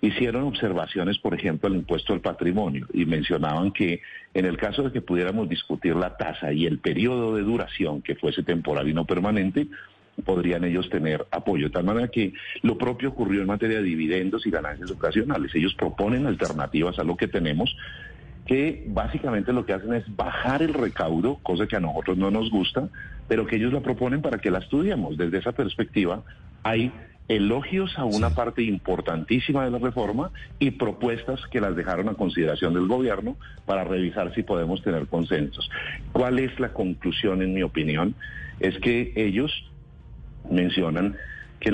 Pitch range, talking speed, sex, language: 90-120 Hz, 175 wpm, male, Spanish